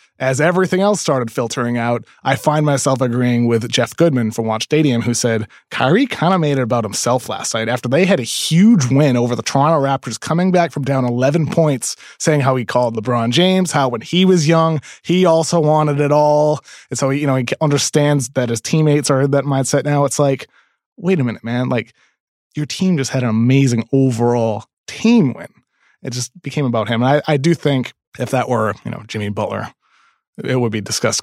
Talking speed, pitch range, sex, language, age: 210 wpm, 120-150 Hz, male, English, 20-39